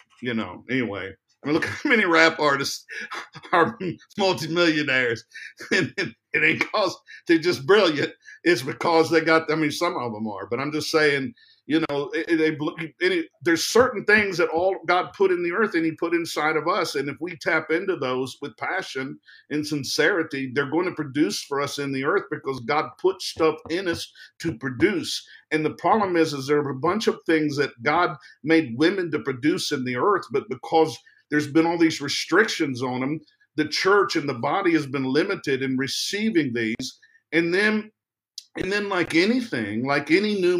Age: 50-69